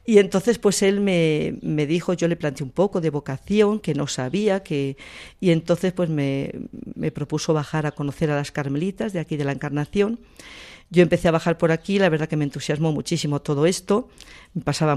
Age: 50-69